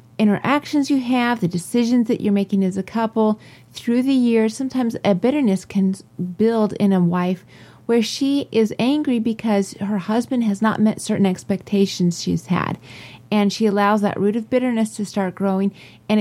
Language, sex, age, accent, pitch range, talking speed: English, female, 30-49, American, 190-225 Hz, 175 wpm